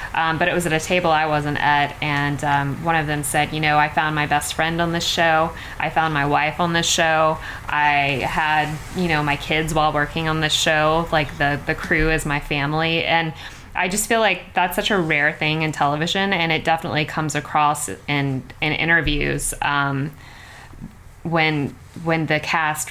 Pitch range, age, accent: 140-160 Hz, 20-39, American